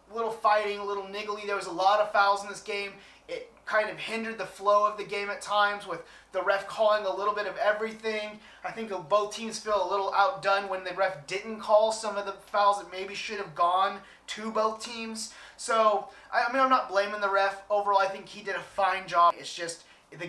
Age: 30-49